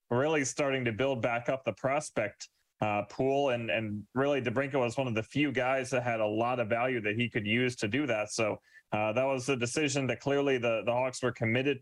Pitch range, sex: 115-135 Hz, male